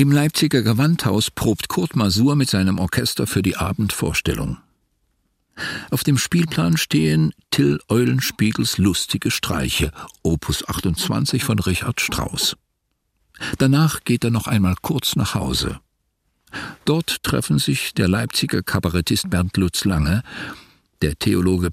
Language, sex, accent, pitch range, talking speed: German, male, German, 90-125 Hz, 120 wpm